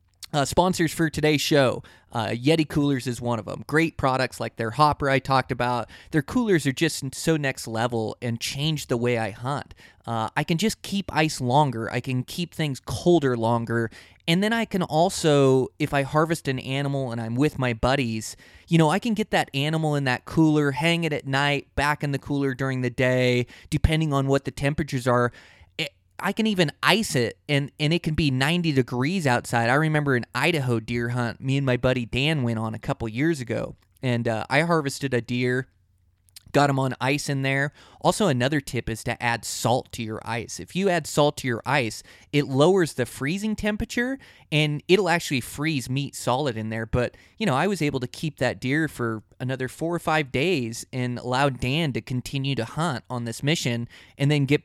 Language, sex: English, male